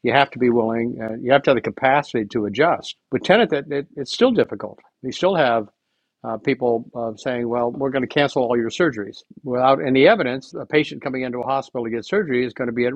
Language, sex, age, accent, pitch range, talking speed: English, male, 50-69, American, 120-140 Hz, 250 wpm